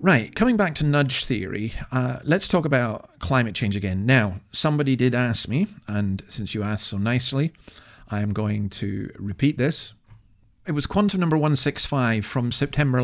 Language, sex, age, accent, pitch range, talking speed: English, male, 40-59, British, 105-140 Hz, 170 wpm